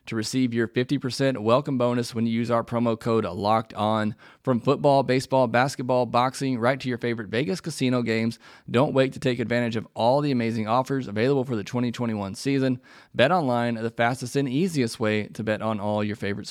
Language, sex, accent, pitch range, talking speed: English, male, American, 115-135 Hz, 195 wpm